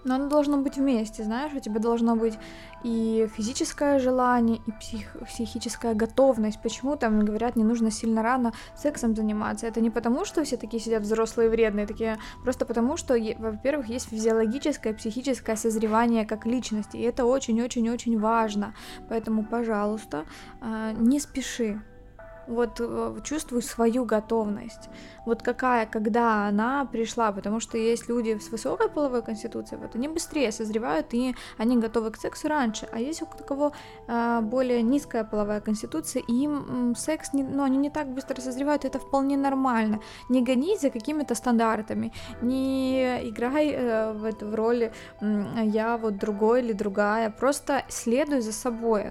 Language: Ukrainian